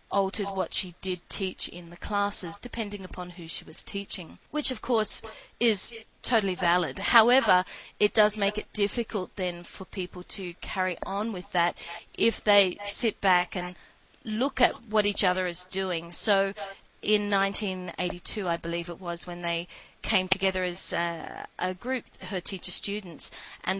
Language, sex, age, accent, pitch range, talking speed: English, female, 30-49, Australian, 180-210 Hz, 165 wpm